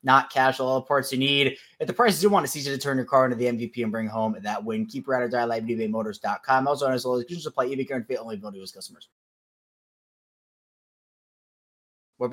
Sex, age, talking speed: male, 20-39, 230 wpm